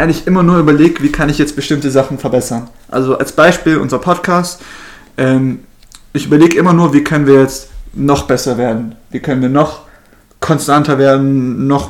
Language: German